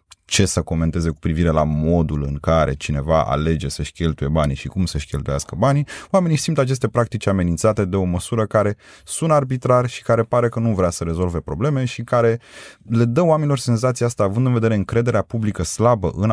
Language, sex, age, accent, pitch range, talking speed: Romanian, male, 20-39, native, 85-120 Hz, 195 wpm